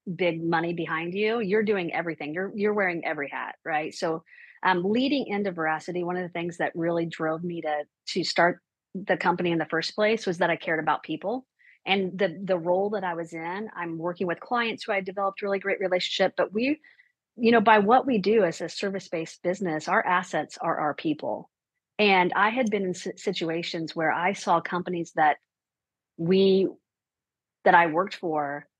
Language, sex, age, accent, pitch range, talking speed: English, female, 40-59, American, 165-205 Hz, 195 wpm